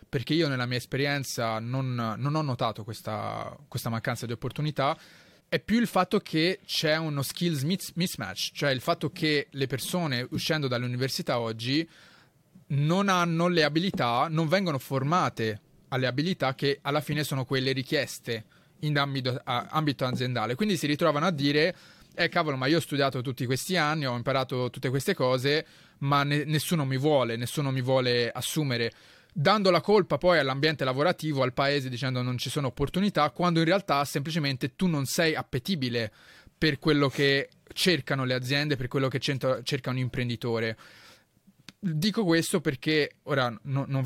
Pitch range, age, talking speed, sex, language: 125-155 Hz, 20-39, 160 wpm, male, Italian